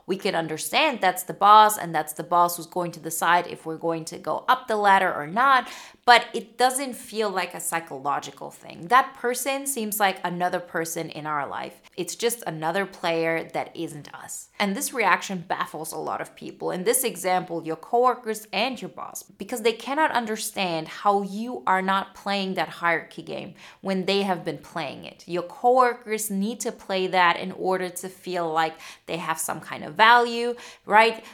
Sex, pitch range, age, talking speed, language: female, 175-225 Hz, 20-39, 190 wpm, English